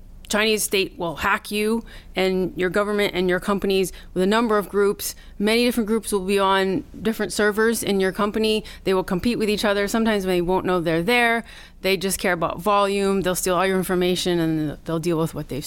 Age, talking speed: 30-49, 210 wpm